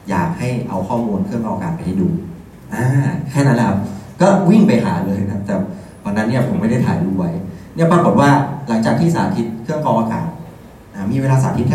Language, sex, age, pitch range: Thai, male, 30-49, 100-135 Hz